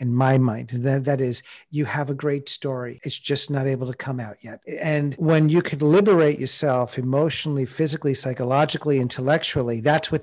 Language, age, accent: English, 50-69, American